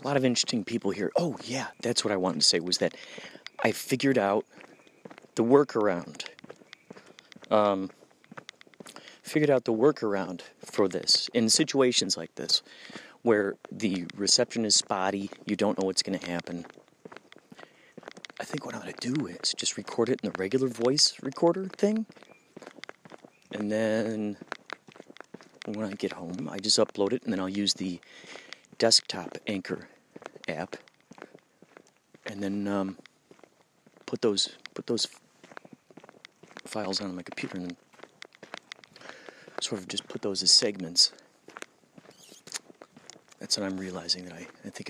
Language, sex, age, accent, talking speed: English, male, 30-49, American, 145 wpm